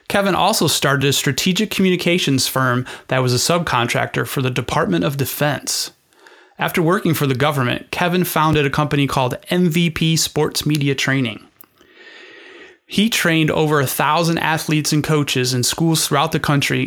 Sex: male